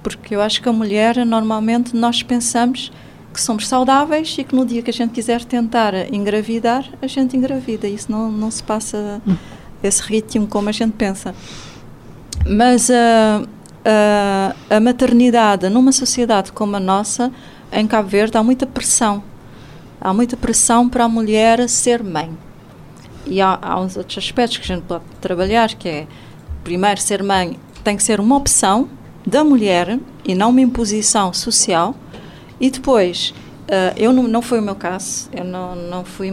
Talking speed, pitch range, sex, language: 170 wpm, 200-250 Hz, female, Portuguese